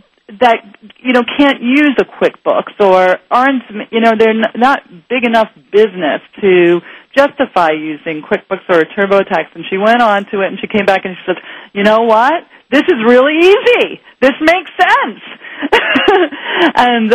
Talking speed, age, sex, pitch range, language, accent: 170 wpm, 40-59, female, 195-270 Hz, English, American